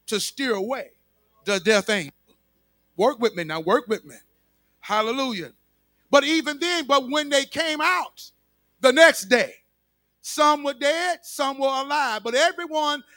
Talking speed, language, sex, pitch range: 150 wpm, English, male, 220-310 Hz